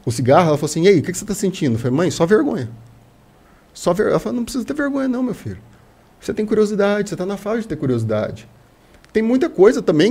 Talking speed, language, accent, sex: 235 wpm, Portuguese, Brazilian, male